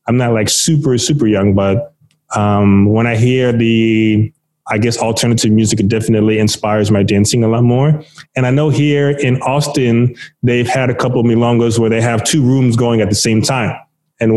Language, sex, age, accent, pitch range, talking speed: English, male, 20-39, American, 110-140 Hz, 195 wpm